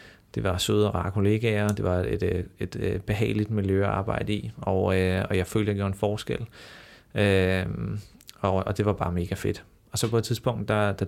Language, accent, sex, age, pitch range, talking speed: Danish, native, male, 30-49, 95-105 Hz, 210 wpm